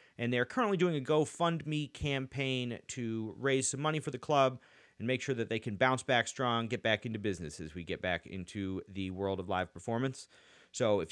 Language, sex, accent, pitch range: English, male, American, 110-155 Hz